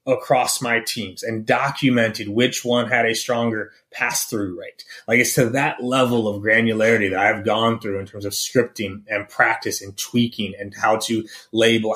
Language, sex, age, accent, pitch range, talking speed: English, male, 30-49, American, 110-135 Hz, 180 wpm